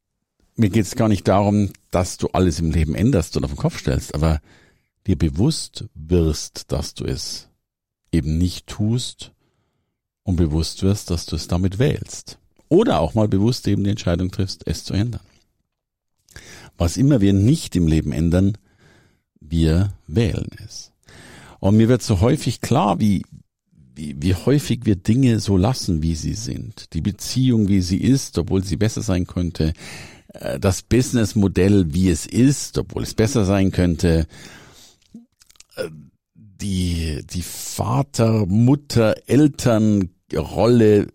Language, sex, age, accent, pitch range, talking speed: German, male, 50-69, German, 85-110 Hz, 140 wpm